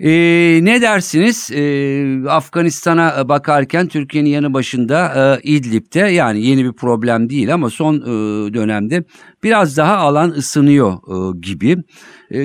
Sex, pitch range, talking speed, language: male, 110-155 Hz, 130 wpm, Turkish